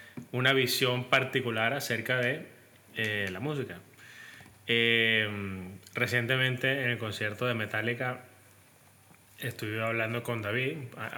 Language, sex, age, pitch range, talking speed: Spanish, male, 20-39, 105-125 Hz, 105 wpm